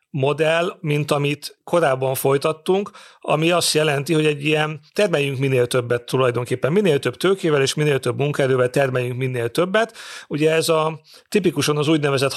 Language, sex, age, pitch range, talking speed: Hungarian, male, 40-59, 130-160 Hz, 150 wpm